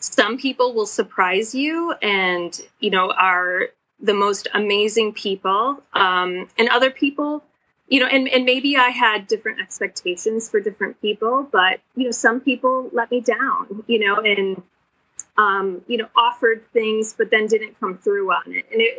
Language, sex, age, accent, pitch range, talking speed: English, female, 30-49, American, 200-255 Hz, 170 wpm